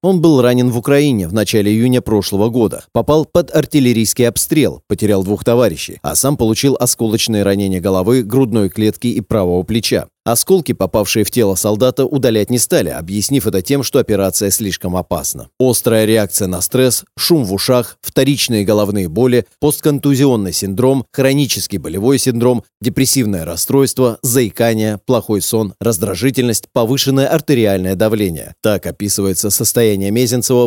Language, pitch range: Russian, 105-135 Hz